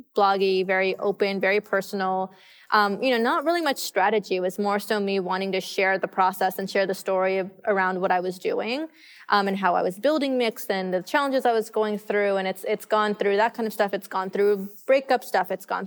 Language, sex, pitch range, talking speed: English, female, 190-215 Hz, 235 wpm